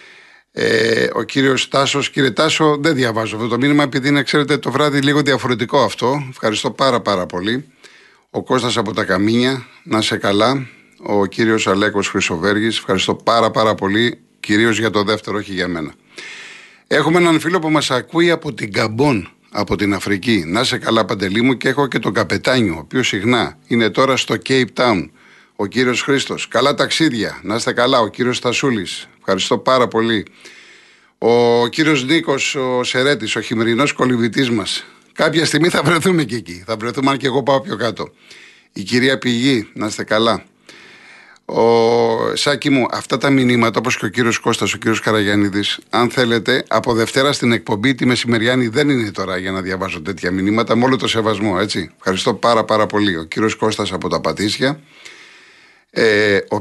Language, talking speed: Greek, 175 wpm